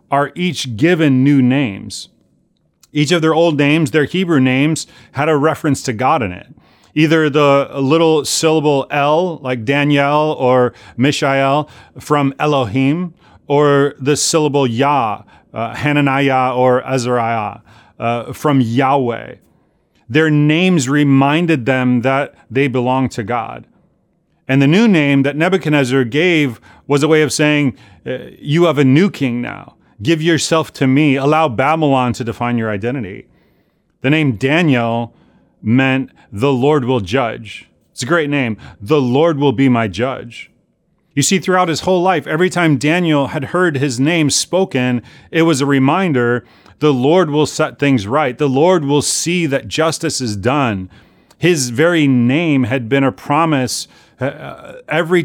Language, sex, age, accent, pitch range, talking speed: English, male, 30-49, American, 130-155 Hz, 150 wpm